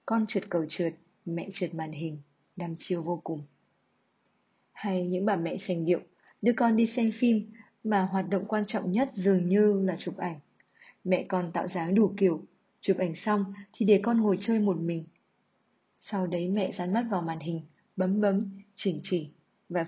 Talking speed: 190 wpm